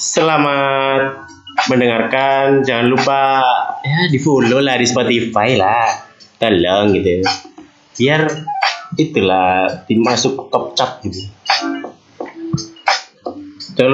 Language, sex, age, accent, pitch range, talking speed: Indonesian, male, 20-39, native, 110-160 Hz, 85 wpm